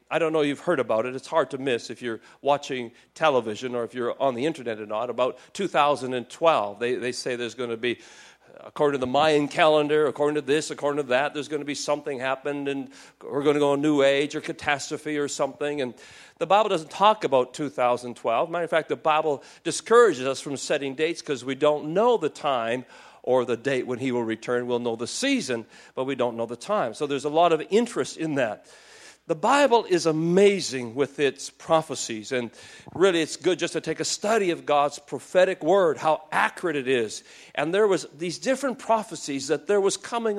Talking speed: 215 wpm